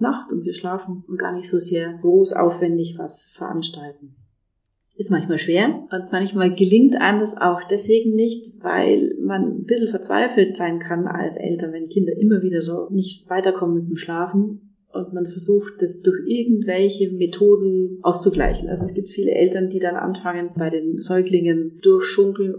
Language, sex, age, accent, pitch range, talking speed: German, female, 30-49, German, 170-210 Hz, 160 wpm